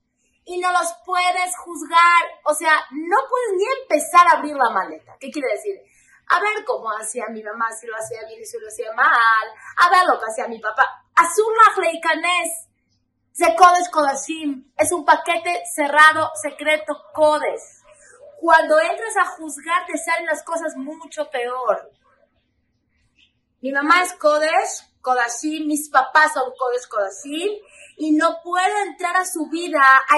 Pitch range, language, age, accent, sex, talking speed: 255-345 Hz, Spanish, 30-49, Mexican, female, 155 wpm